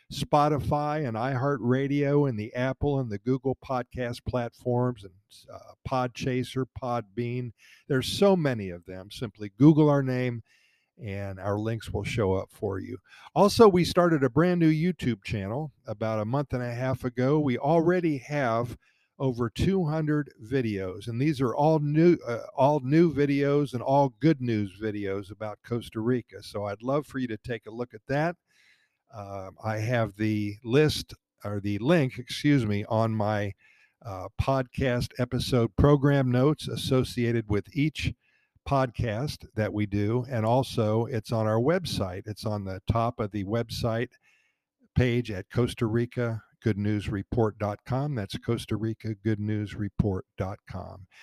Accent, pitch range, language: American, 110-140 Hz, English